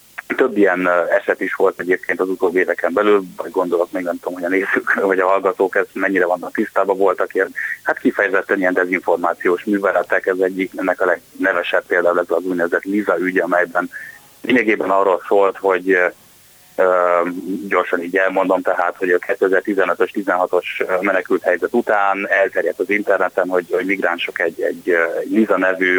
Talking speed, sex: 155 wpm, male